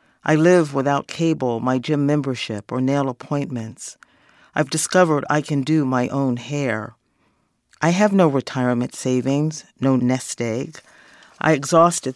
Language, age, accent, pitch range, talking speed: English, 50-69, American, 130-155 Hz, 140 wpm